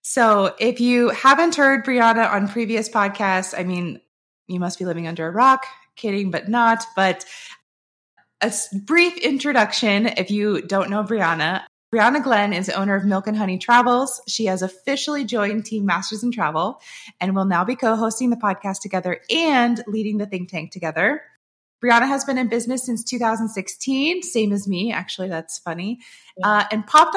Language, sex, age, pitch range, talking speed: English, female, 20-39, 185-240 Hz, 170 wpm